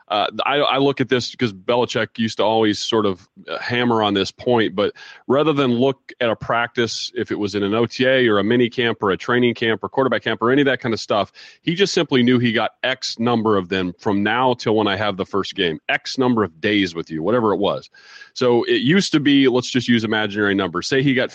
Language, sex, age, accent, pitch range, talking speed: English, male, 30-49, American, 105-130 Hz, 250 wpm